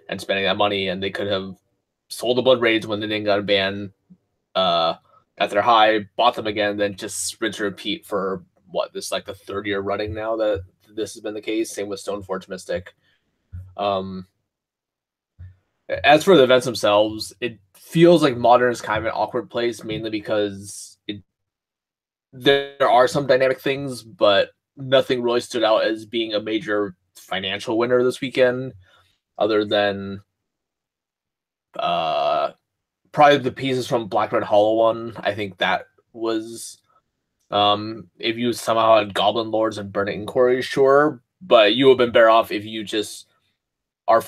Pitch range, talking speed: 100-120 Hz, 165 wpm